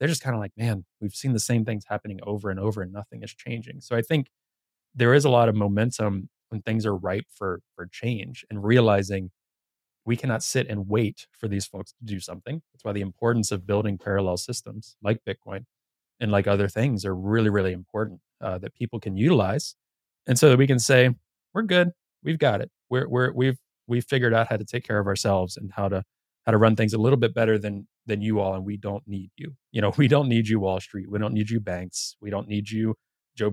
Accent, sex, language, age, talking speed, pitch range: American, male, English, 20-39, 235 wpm, 100-120 Hz